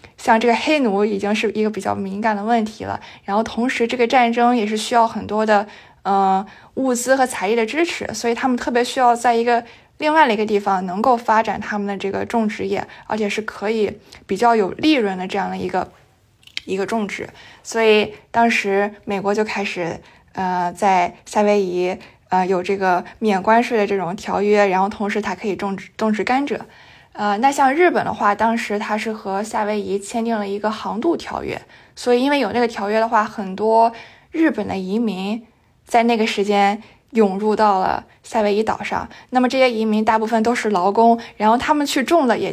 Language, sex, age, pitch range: Chinese, female, 20-39, 200-235 Hz